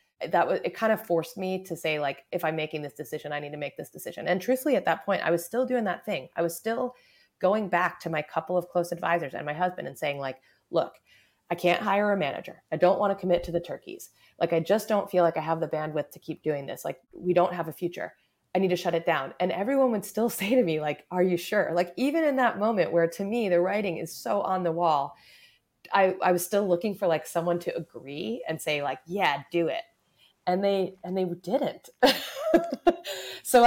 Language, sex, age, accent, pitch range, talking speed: English, female, 30-49, American, 155-195 Hz, 245 wpm